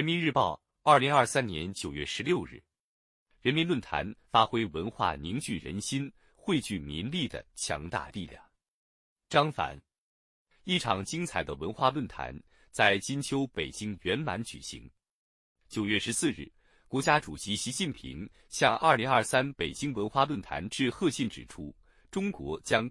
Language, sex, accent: Chinese, male, native